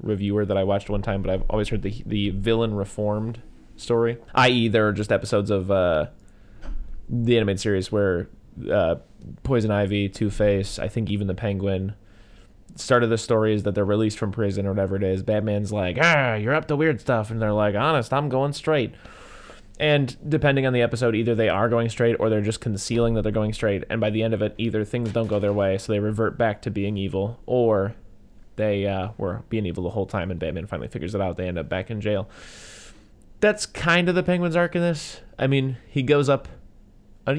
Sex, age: male, 20-39